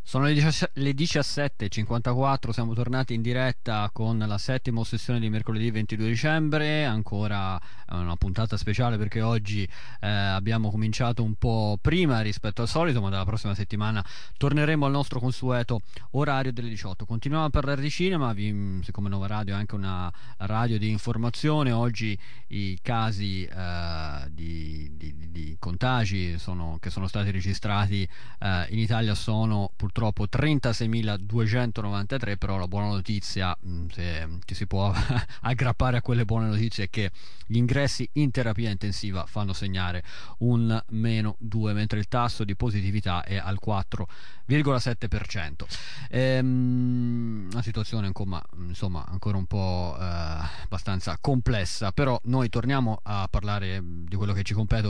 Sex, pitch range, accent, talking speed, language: male, 100-120 Hz, native, 145 wpm, Italian